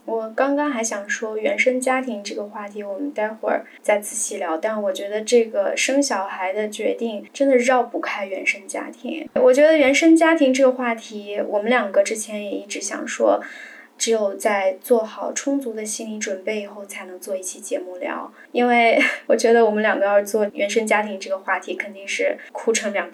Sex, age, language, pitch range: female, 10-29, Chinese, 215-275 Hz